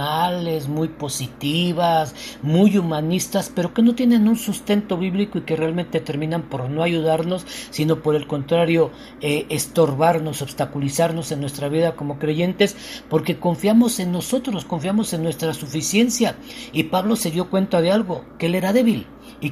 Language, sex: Spanish, male